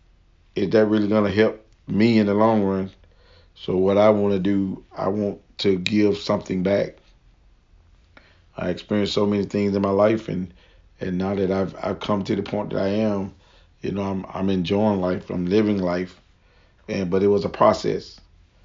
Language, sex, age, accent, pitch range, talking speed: English, male, 40-59, American, 95-110 Hz, 185 wpm